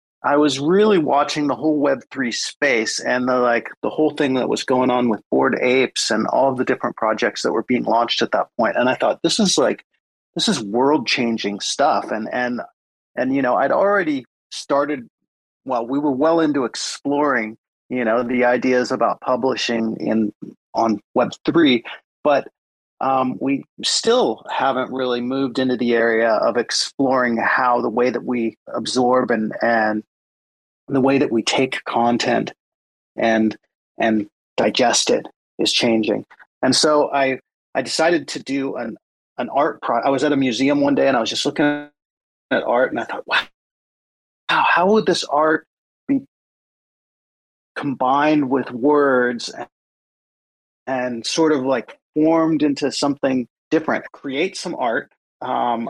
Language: English